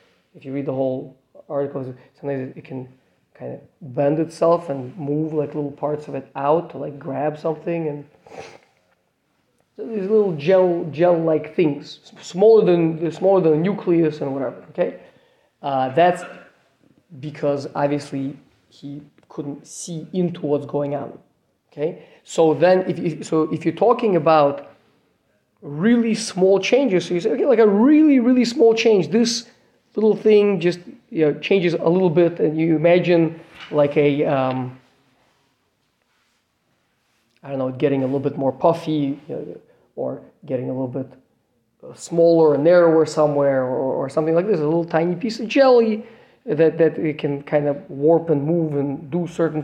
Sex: male